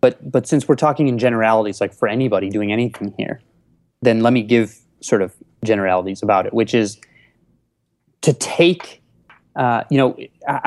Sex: male